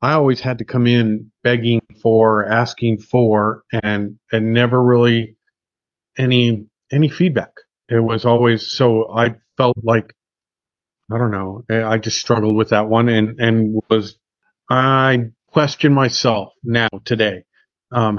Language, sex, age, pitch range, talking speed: English, male, 40-59, 110-125 Hz, 140 wpm